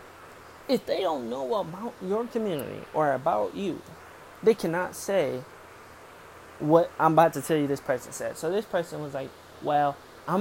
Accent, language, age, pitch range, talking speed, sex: American, English, 20-39, 150-210 Hz, 165 wpm, male